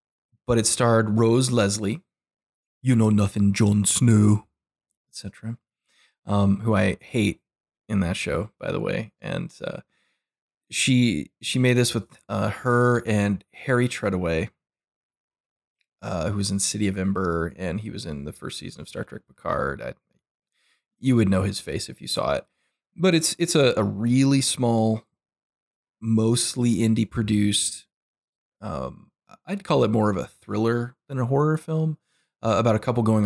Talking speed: 160 wpm